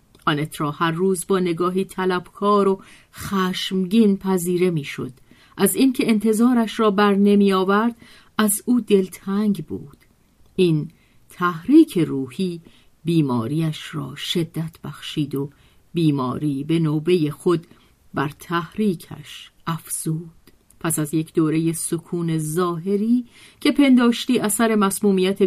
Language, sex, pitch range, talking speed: Persian, female, 155-215 Hz, 110 wpm